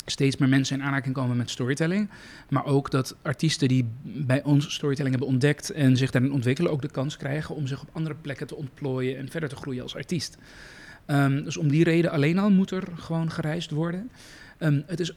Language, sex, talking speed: Dutch, male, 205 wpm